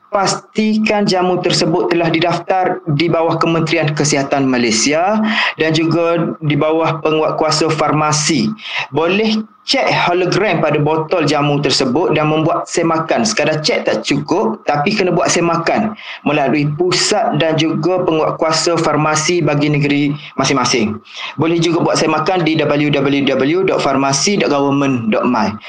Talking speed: 115 wpm